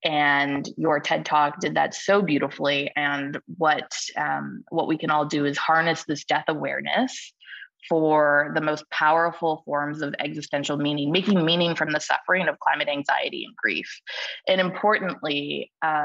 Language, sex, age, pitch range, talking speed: English, female, 20-39, 145-165 Hz, 155 wpm